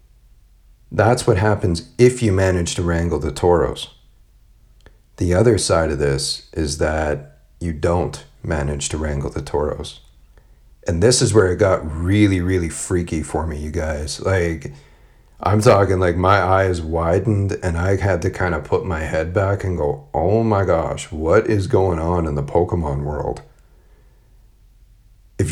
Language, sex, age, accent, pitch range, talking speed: English, male, 40-59, American, 80-95 Hz, 160 wpm